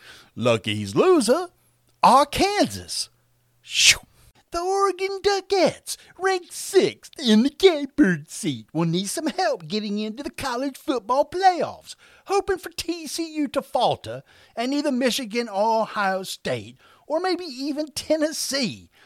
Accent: American